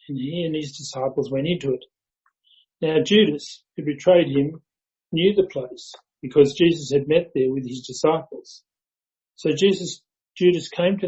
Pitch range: 140-175 Hz